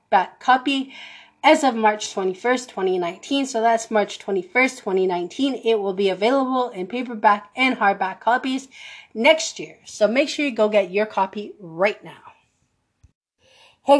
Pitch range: 180-265 Hz